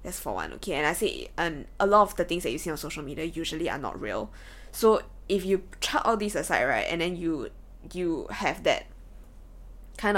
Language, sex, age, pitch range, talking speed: English, female, 10-29, 165-195 Hz, 225 wpm